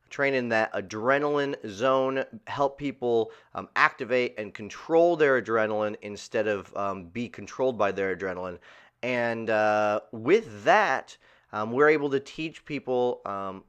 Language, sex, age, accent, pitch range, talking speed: English, male, 30-49, American, 105-135 Hz, 140 wpm